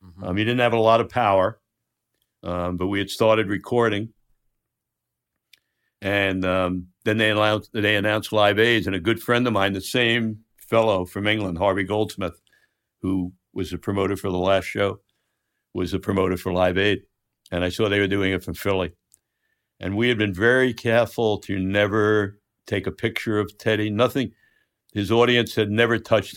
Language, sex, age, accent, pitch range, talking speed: English, male, 60-79, American, 95-110 Hz, 175 wpm